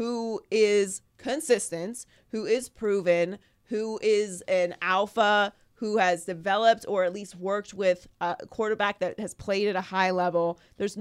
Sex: female